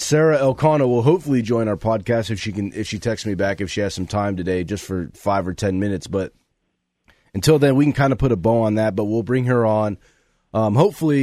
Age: 30-49